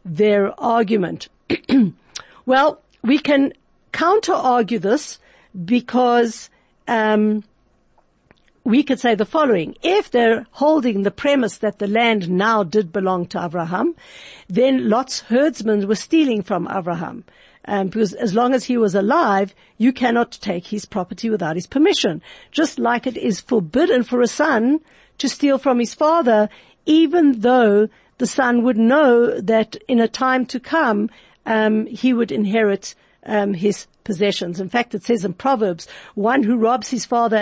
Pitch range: 205-255 Hz